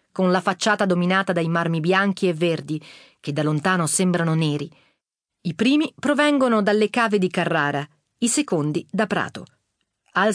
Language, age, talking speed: Italian, 40-59, 150 wpm